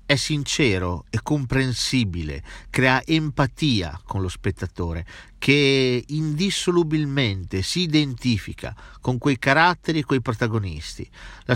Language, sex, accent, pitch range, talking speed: Italian, male, native, 105-145 Hz, 105 wpm